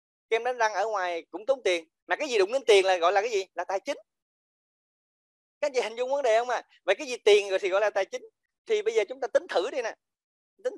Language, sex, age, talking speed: Vietnamese, male, 20-39, 290 wpm